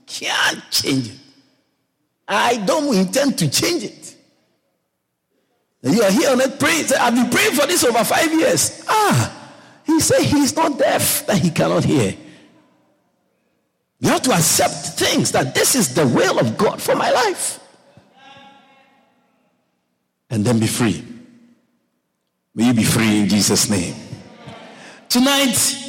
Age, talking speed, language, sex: 50-69, 140 wpm, English, male